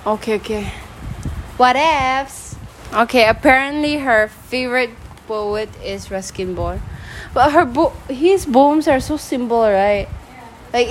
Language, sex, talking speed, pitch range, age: English, female, 120 wpm, 200-265 Hz, 20-39